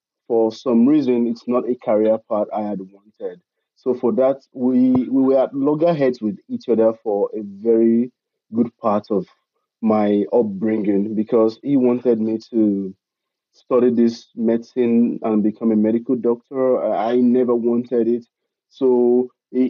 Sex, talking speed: male, 150 wpm